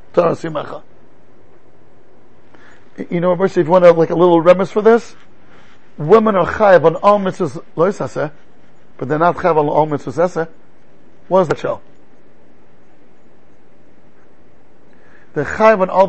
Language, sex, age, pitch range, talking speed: English, male, 50-69, 160-230 Hz, 125 wpm